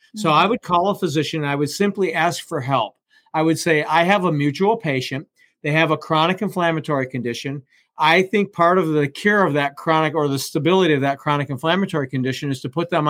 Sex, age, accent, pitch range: male, 50-69, American, 145-185 Hz